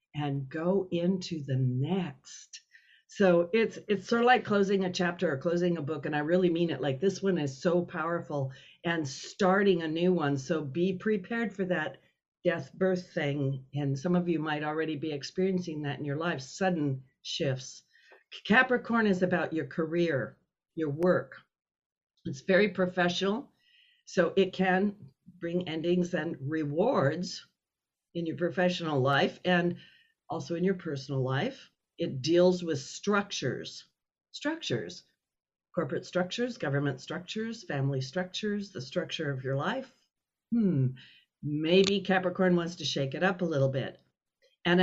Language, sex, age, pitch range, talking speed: English, female, 60-79, 150-185 Hz, 150 wpm